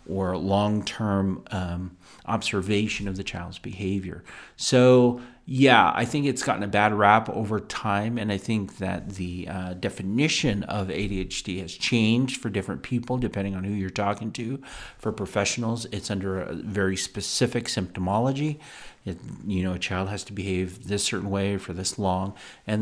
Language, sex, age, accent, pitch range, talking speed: English, male, 40-59, American, 95-120 Hz, 165 wpm